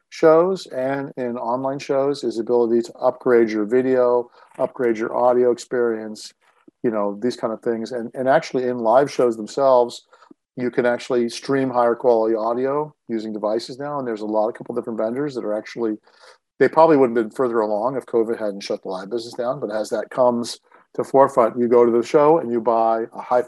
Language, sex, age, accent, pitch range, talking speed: English, male, 50-69, American, 110-130 Hz, 210 wpm